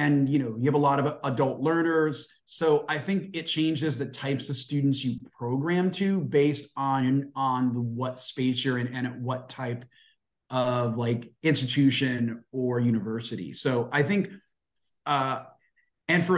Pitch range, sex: 130-155 Hz, male